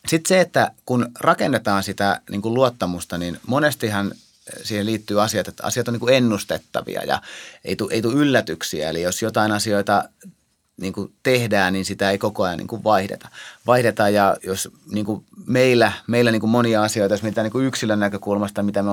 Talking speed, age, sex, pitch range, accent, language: 190 wpm, 30-49, male, 95-110 Hz, native, Finnish